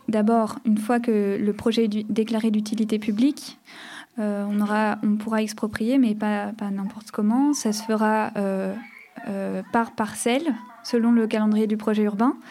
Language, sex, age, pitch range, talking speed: French, female, 20-39, 210-240 Hz, 160 wpm